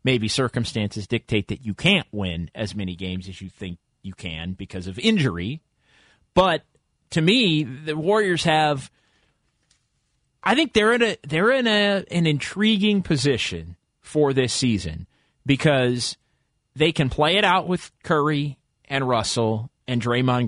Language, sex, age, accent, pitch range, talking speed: English, male, 30-49, American, 115-150 Hz, 145 wpm